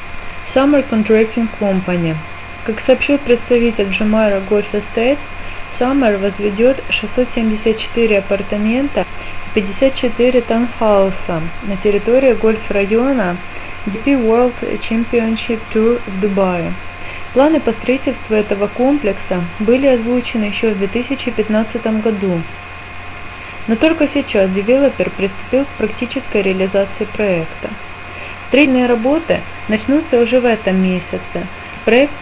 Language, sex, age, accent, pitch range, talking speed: Russian, female, 20-39, native, 200-245 Hz, 100 wpm